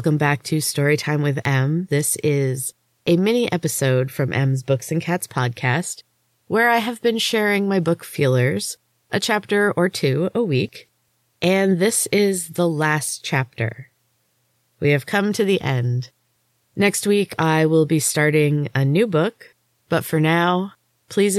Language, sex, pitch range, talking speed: English, female, 130-165 Hz, 155 wpm